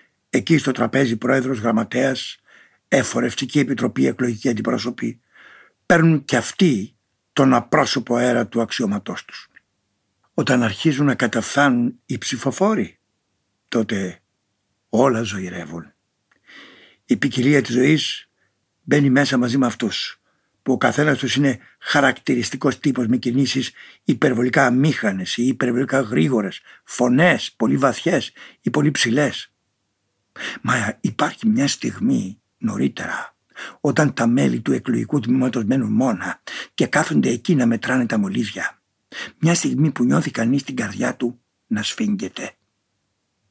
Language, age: Greek, 60-79